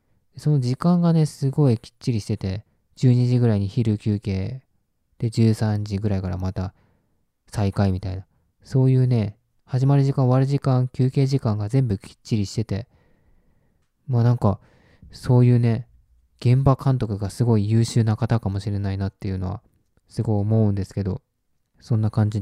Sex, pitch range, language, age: male, 105-145 Hz, Japanese, 20-39